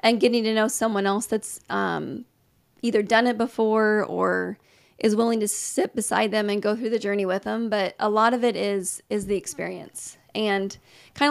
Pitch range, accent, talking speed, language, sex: 205-230 Hz, American, 195 wpm, English, female